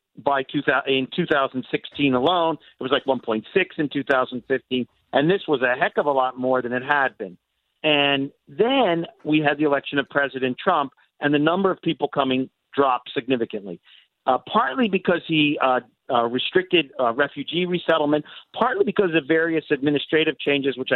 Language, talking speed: English, 160 wpm